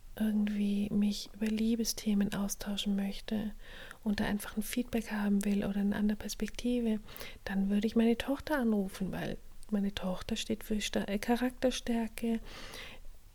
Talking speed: 130 wpm